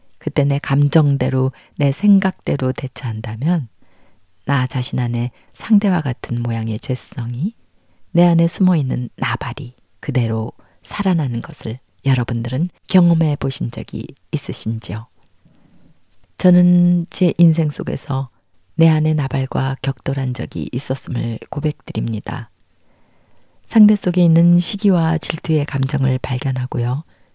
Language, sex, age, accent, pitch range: Korean, female, 40-59, native, 115-165 Hz